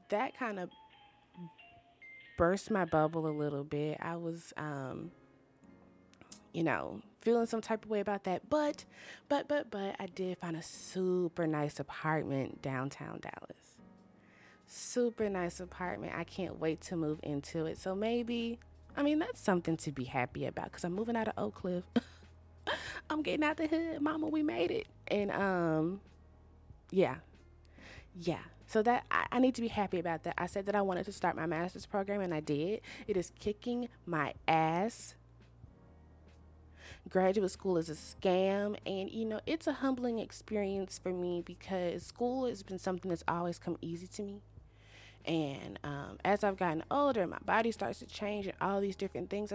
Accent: American